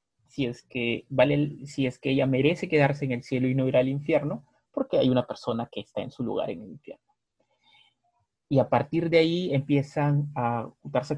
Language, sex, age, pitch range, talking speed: Spanish, male, 30-49, 130-160 Hz, 205 wpm